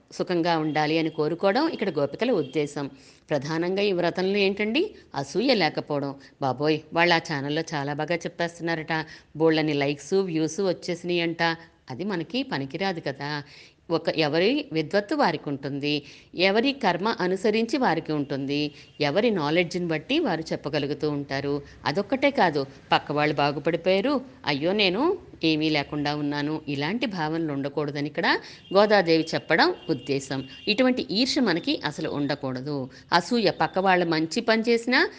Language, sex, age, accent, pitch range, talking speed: Telugu, female, 50-69, native, 150-185 Hz, 120 wpm